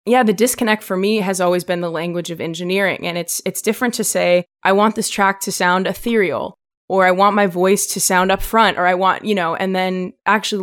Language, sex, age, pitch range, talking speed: English, female, 20-39, 175-210 Hz, 235 wpm